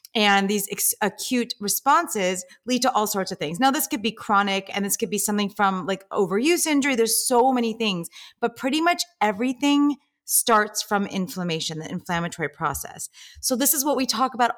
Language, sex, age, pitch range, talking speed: English, female, 30-49, 190-240 Hz, 185 wpm